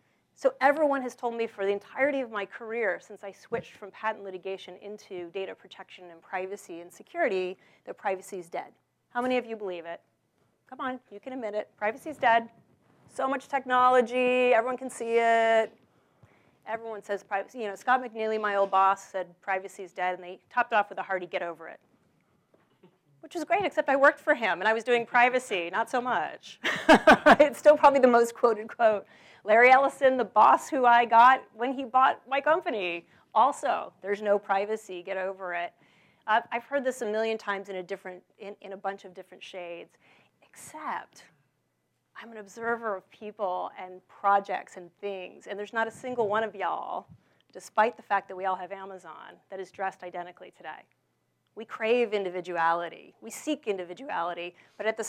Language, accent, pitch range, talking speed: English, American, 190-245 Hz, 185 wpm